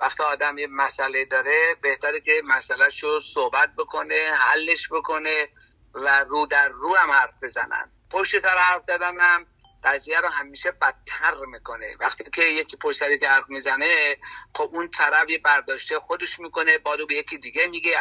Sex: male